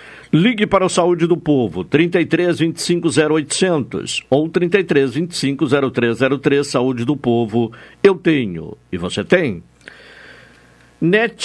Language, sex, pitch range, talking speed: Portuguese, male, 135-175 Hz, 115 wpm